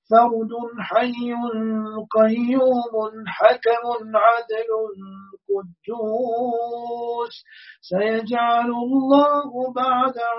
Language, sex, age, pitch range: Turkish, male, 40-59, 220-245 Hz